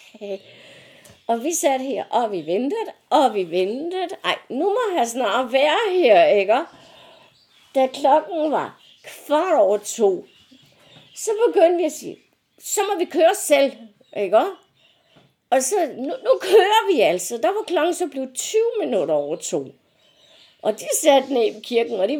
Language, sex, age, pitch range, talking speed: Danish, female, 60-79, 225-335 Hz, 160 wpm